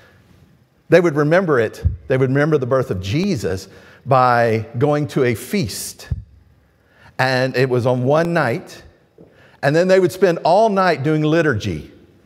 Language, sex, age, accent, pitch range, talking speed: English, male, 50-69, American, 150-210 Hz, 150 wpm